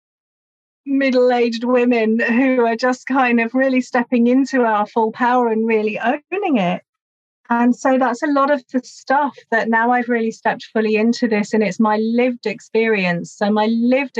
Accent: British